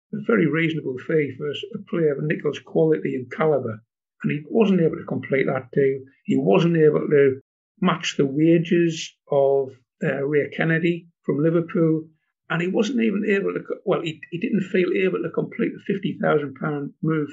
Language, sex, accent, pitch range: English, male, British, 145-175 Hz